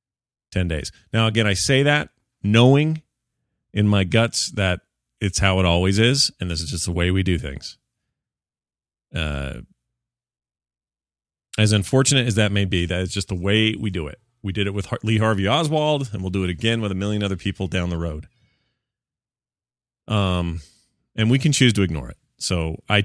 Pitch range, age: 90-120 Hz, 30-49